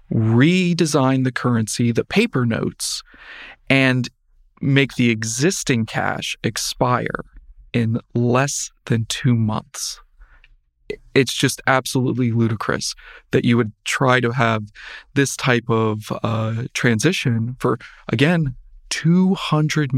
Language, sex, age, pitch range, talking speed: English, male, 40-59, 115-130 Hz, 105 wpm